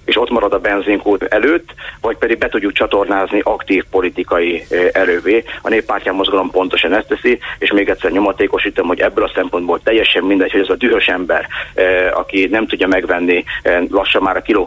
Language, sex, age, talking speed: Hungarian, male, 30-49, 190 wpm